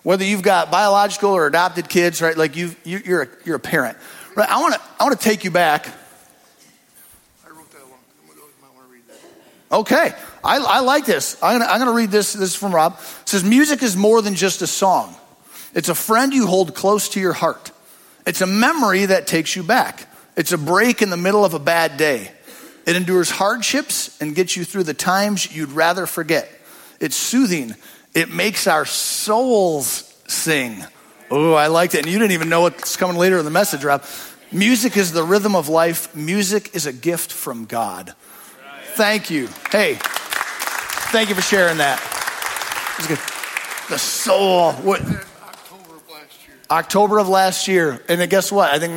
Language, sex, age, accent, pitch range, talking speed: English, male, 40-59, American, 165-200 Hz, 180 wpm